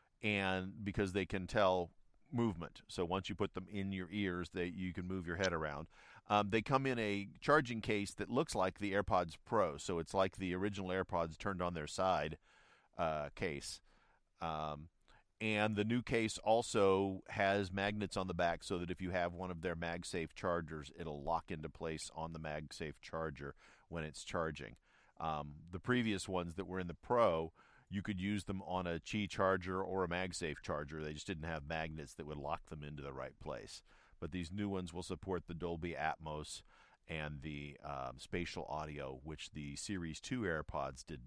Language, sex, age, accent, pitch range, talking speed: English, male, 40-59, American, 80-100 Hz, 190 wpm